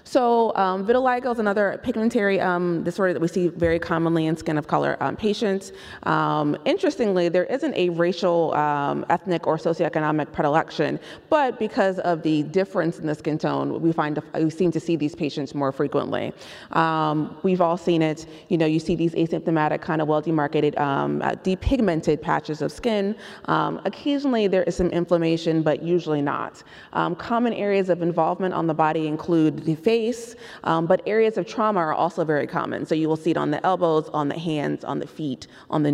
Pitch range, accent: 155-185 Hz, American